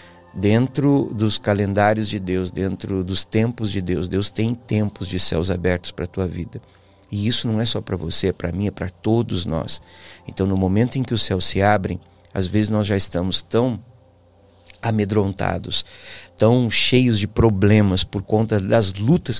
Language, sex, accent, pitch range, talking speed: Portuguese, male, Brazilian, 95-125 Hz, 180 wpm